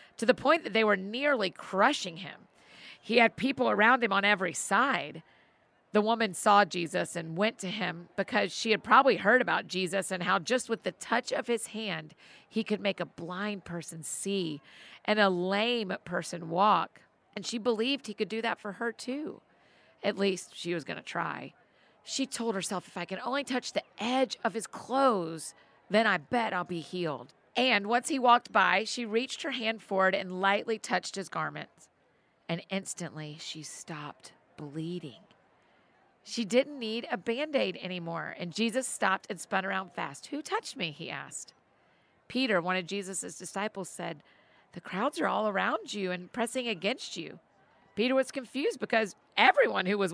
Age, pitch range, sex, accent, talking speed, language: 40-59, 180-230 Hz, female, American, 180 wpm, English